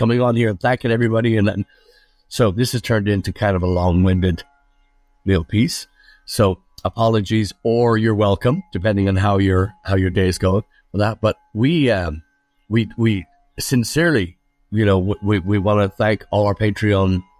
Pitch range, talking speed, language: 95-120 Hz, 185 wpm, English